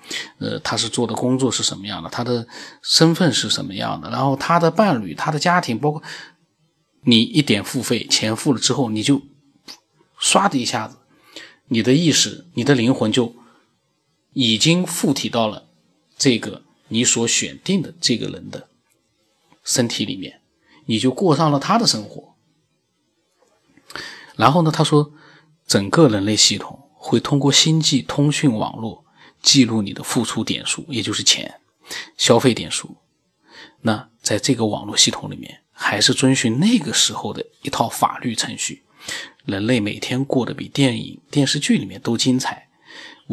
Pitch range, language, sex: 115-155 Hz, Chinese, male